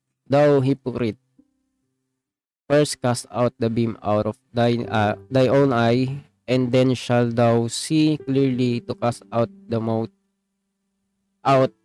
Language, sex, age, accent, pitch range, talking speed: Filipino, male, 20-39, native, 110-130 Hz, 130 wpm